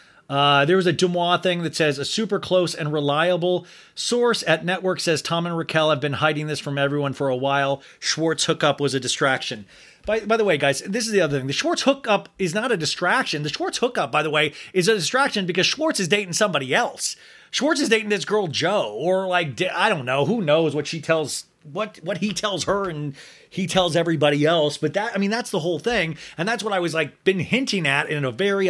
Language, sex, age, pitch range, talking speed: English, male, 30-49, 150-200 Hz, 235 wpm